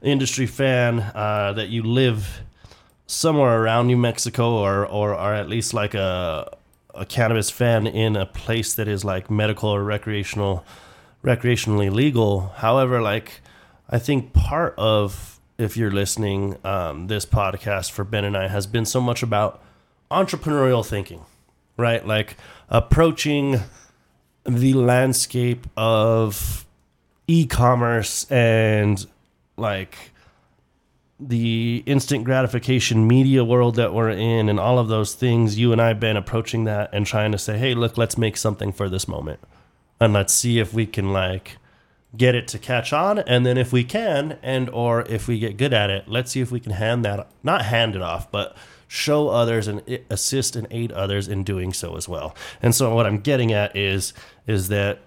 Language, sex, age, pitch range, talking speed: English, male, 30-49, 100-125 Hz, 165 wpm